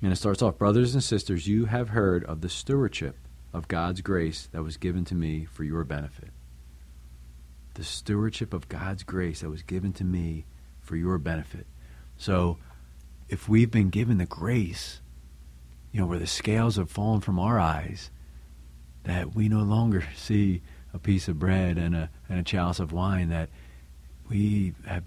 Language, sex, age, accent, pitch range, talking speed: English, male, 40-59, American, 65-95 Hz, 175 wpm